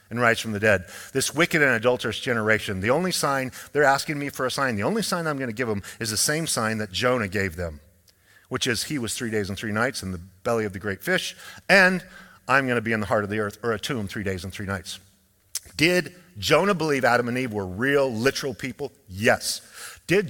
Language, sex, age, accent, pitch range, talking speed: English, male, 50-69, American, 100-145 Hz, 240 wpm